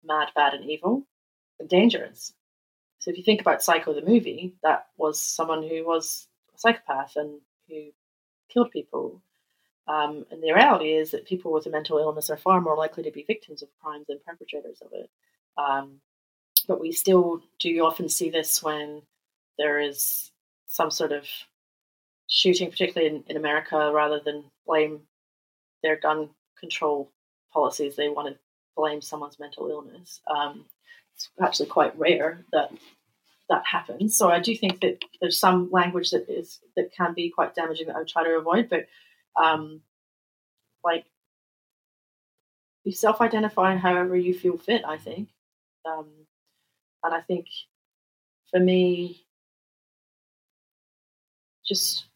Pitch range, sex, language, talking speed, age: 150-180 Hz, female, English, 145 wpm, 30-49